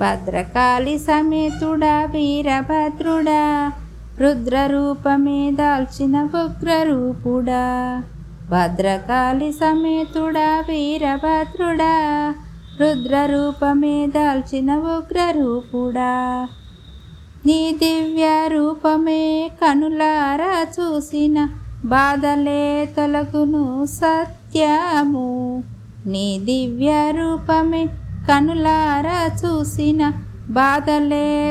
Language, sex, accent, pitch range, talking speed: Telugu, female, native, 265-320 Hz, 55 wpm